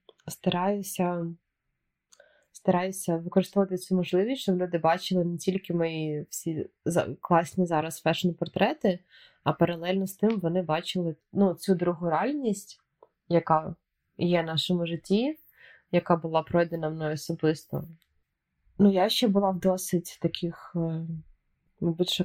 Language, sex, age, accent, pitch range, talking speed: Ukrainian, female, 20-39, native, 165-190 Hz, 110 wpm